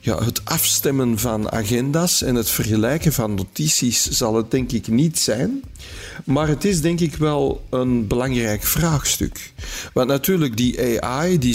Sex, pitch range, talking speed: male, 110-145 Hz, 145 wpm